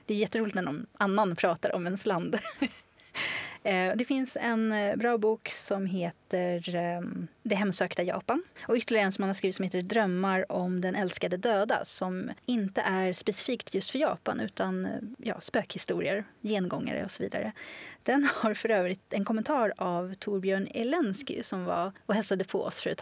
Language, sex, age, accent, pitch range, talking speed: Swedish, female, 20-39, native, 185-225 Hz, 170 wpm